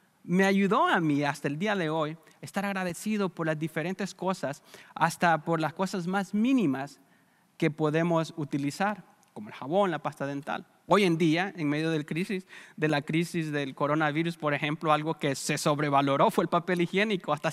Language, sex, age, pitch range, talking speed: English, male, 30-49, 150-195 Hz, 180 wpm